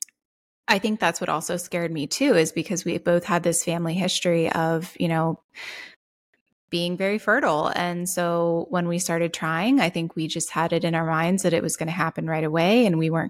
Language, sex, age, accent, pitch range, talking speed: English, female, 20-39, American, 165-180 Hz, 215 wpm